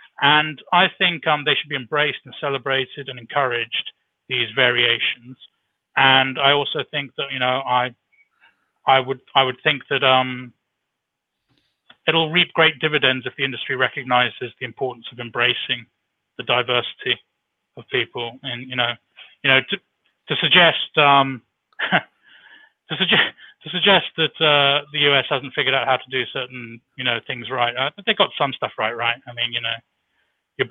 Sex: male